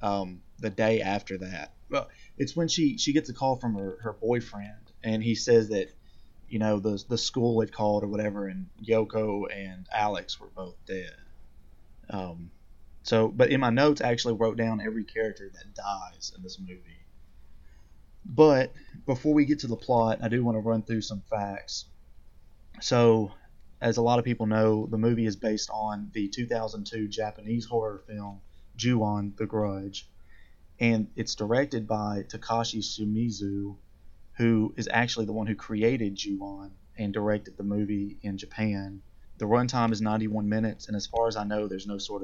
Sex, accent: male, American